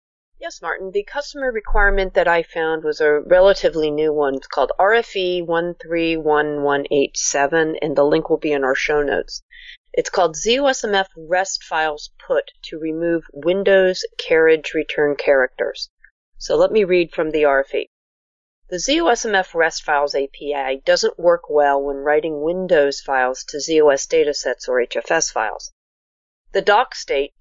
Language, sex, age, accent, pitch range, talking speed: English, female, 40-59, American, 150-235 Hz, 145 wpm